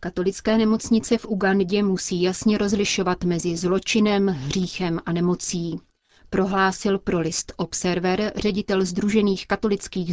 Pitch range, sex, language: 175-200 Hz, female, Czech